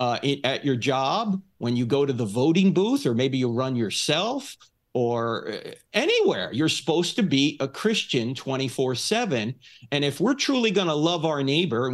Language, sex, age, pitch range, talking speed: English, male, 50-69, 125-180 Hz, 180 wpm